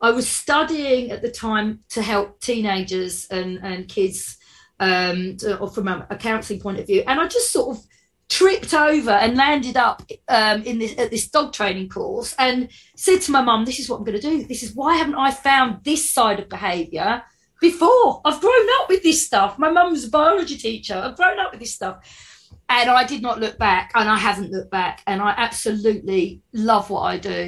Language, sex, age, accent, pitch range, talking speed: English, female, 40-59, British, 190-255 Hz, 210 wpm